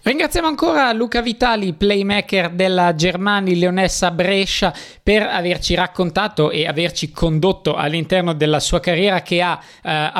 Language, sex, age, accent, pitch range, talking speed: Italian, male, 20-39, native, 150-180 Hz, 130 wpm